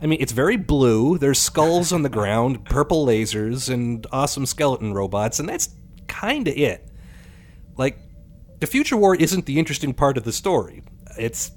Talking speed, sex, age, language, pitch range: 170 wpm, male, 30-49, English, 105-145 Hz